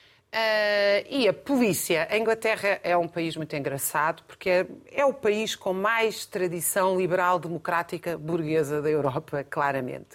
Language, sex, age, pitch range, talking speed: Portuguese, female, 40-59, 155-205 Hz, 150 wpm